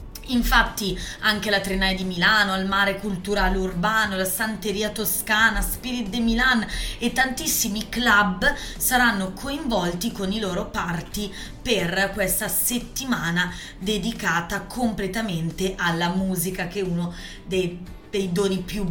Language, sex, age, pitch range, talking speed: Italian, female, 20-39, 185-230 Hz, 125 wpm